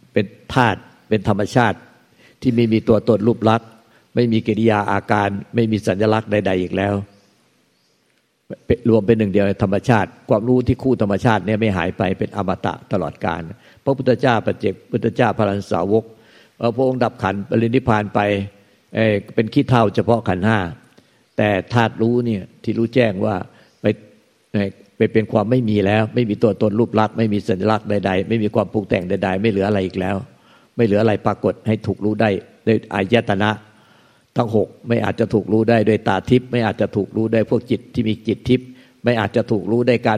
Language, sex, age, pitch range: Thai, male, 60-79, 105-115 Hz